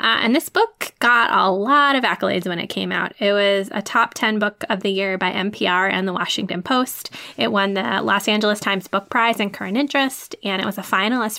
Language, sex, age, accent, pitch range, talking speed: English, female, 10-29, American, 185-215 Hz, 230 wpm